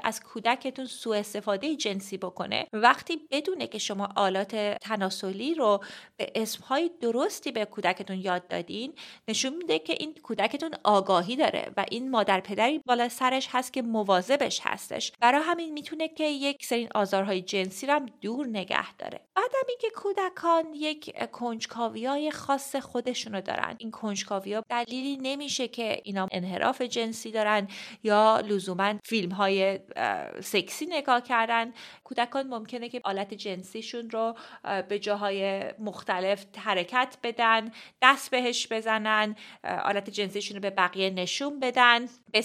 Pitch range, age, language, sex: 205-260 Hz, 30-49, Persian, female